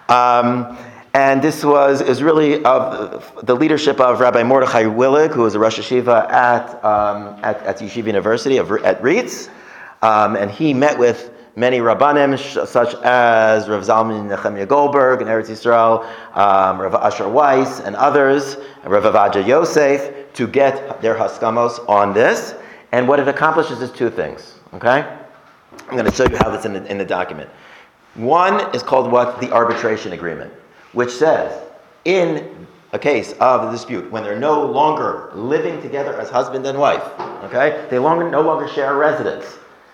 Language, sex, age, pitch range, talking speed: English, male, 40-59, 115-145 Hz, 165 wpm